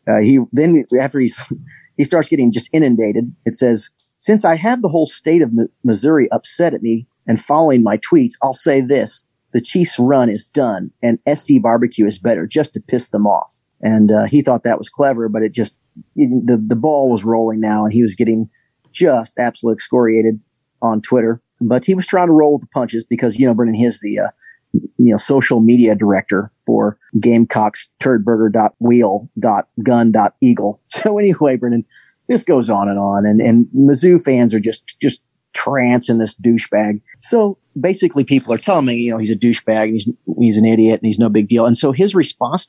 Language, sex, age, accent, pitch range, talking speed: English, male, 30-49, American, 115-140 Hz, 195 wpm